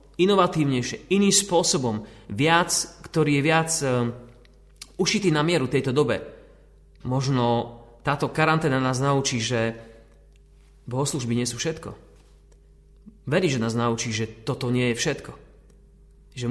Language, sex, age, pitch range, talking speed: Slovak, male, 30-49, 125-180 Hz, 115 wpm